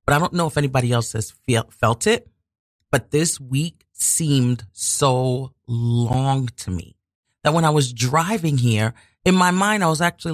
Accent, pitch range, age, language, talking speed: American, 115-175 Hz, 40-59, English, 170 wpm